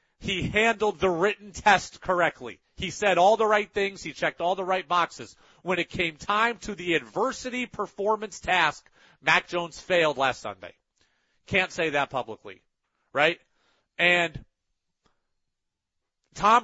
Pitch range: 165-210 Hz